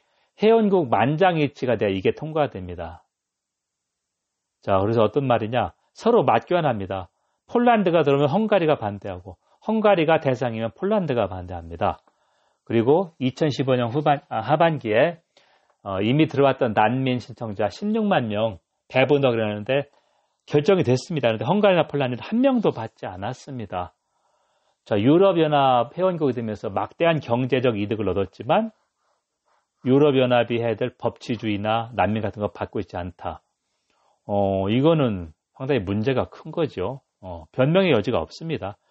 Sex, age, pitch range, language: male, 40-59, 105-150 Hz, Korean